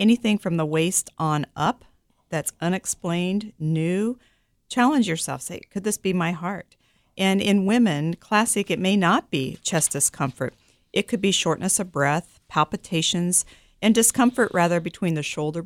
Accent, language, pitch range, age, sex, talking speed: American, English, 155-200 Hz, 50-69, female, 155 wpm